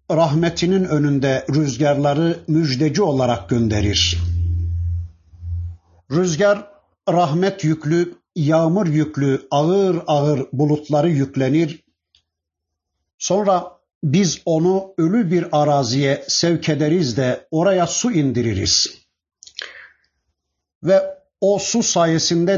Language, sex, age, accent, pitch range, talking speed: Turkish, male, 50-69, native, 115-180 Hz, 80 wpm